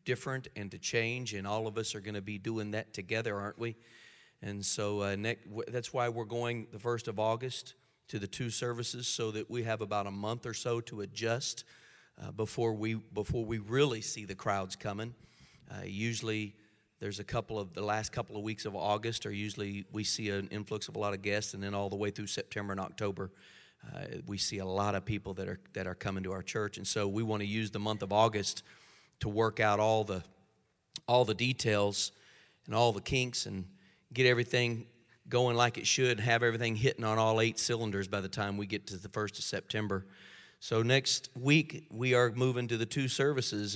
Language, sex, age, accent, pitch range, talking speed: English, male, 40-59, American, 105-120 Hz, 220 wpm